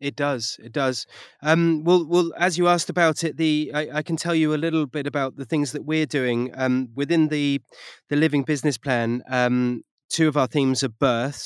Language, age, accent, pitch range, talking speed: English, 20-39, British, 115-140 Hz, 215 wpm